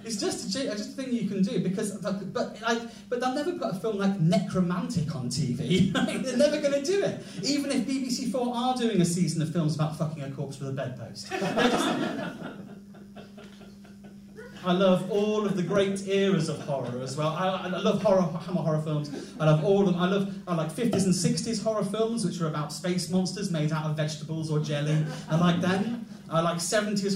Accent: British